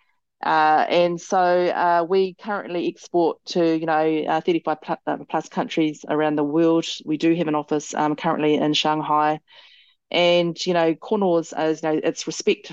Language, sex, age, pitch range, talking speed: English, female, 30-49, 150-175 Hz, 170 wpm